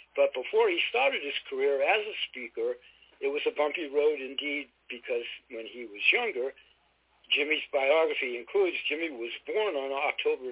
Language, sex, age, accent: Chinese, male, 60-79, American